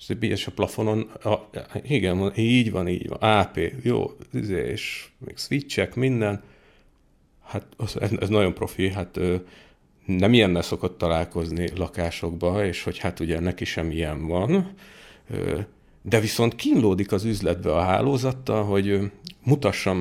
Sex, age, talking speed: male, 50-69, 130 wpm